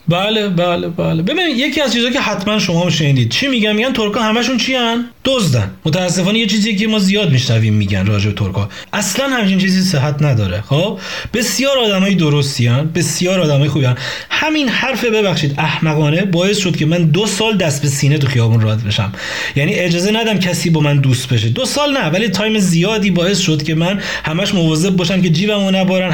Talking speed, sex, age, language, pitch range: 195 wpm, male, 30-49, Persian, 150-215 Hz